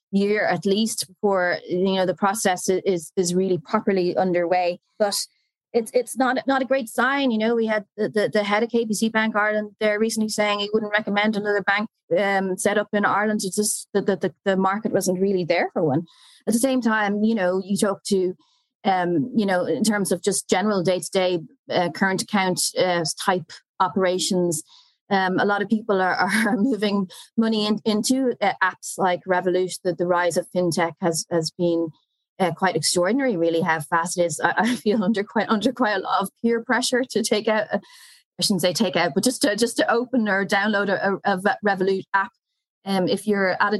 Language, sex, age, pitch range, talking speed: English, female, 30-49, 180-215 Hz, 205 wpm